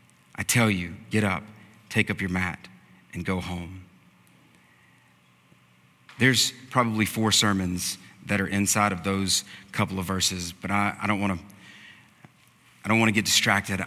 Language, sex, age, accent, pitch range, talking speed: English, male, 40-59, American, 95-135 Hz, 145 wpm